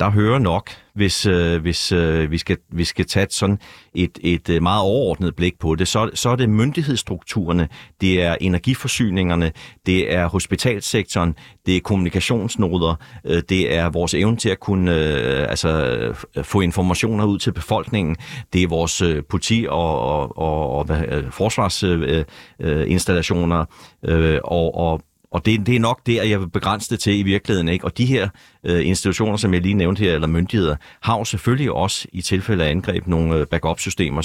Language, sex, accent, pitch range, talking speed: Danish, male, native, 80-100 Hz, 175 wpm